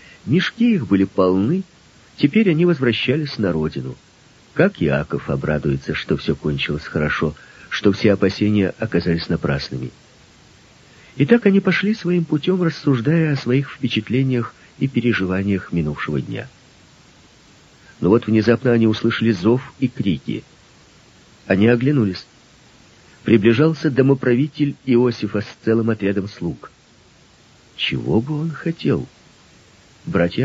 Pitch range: 105-155 Hz